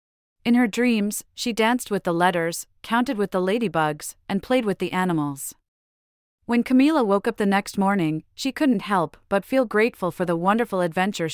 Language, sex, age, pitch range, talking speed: English, female, 30-49, 165-220 Hz, 180 wpm